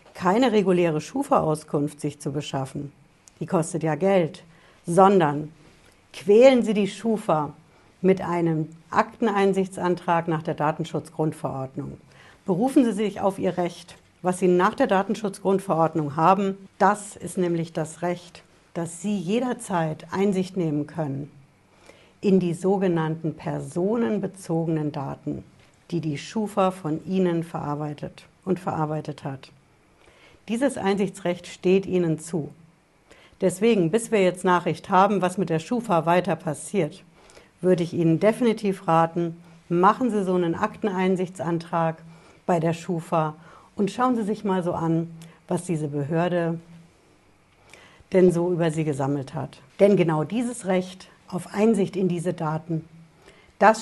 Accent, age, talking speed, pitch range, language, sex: German, 60-79, 125 wpm, 160-195 Hz, German, female